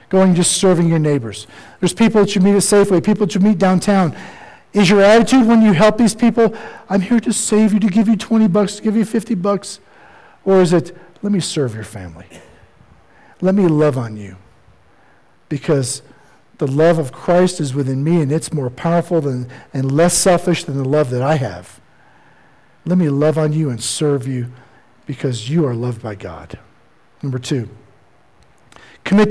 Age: 50-69